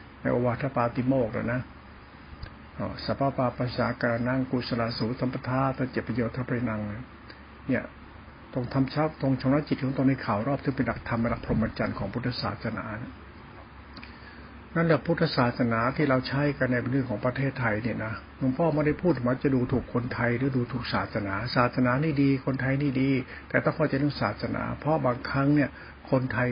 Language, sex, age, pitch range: Thai, male, 60-79, 120-140 Hz